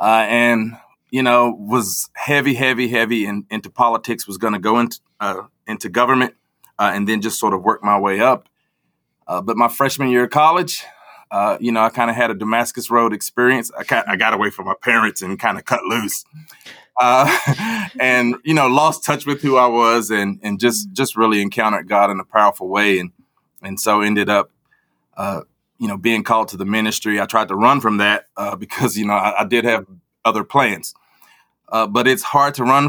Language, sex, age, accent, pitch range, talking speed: English, male, 30-49, American, 105-125 Hz, 210 wpm